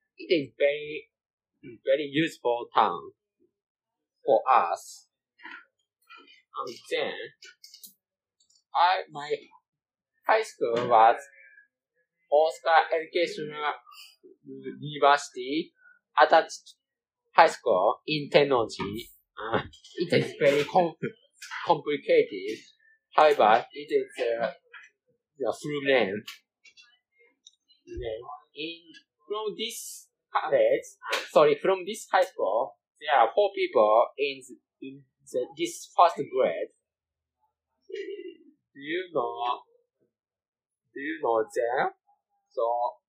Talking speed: 90 wpm